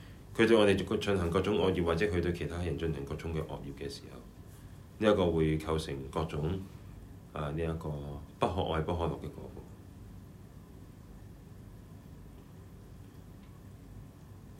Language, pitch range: Chinese, 80-95 Hz